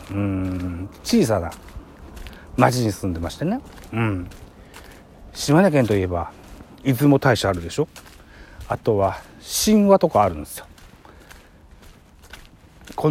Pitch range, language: 85-125 Hz, Japanese